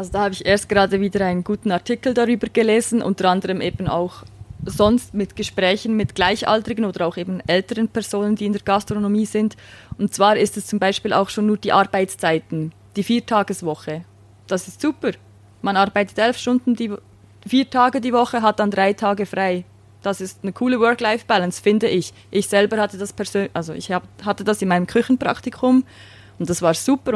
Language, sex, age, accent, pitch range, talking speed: German, female, 20-39, Swiss, 185-215 Hz, 185 wpm